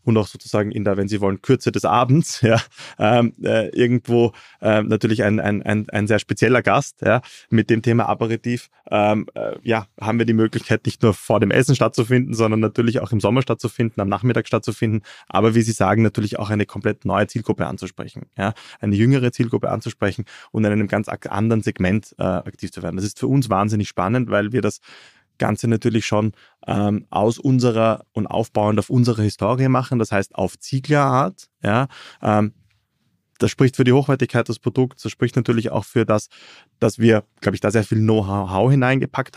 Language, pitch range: German, 105-120 Hz